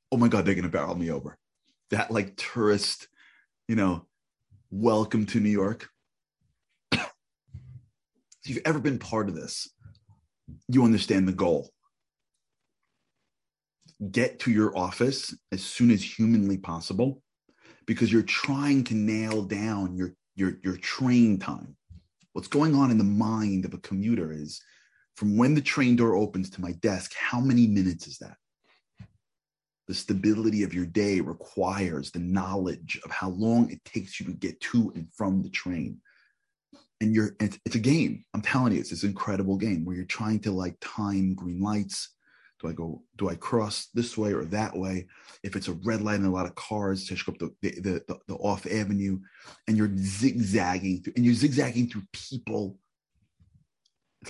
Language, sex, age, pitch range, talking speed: English, male, 30-49, 95-115 Hz, 170 wpm